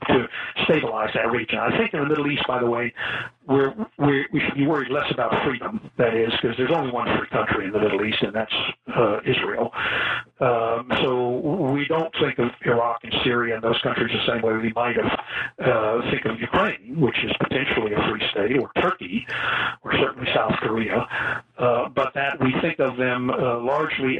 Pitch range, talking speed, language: 115-135 Hz, 195 wpm, English